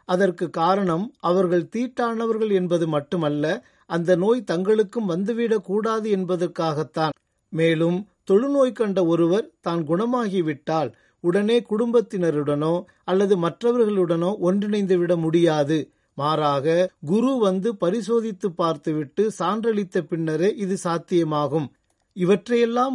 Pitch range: 165-210 Hz